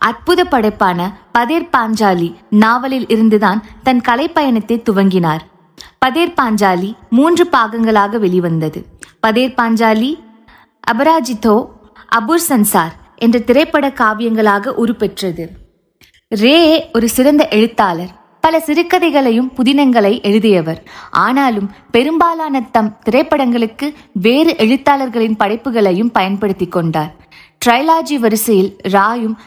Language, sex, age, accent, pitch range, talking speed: Tamil, female, 20-39, native, 210-275 Hz, 80 wpm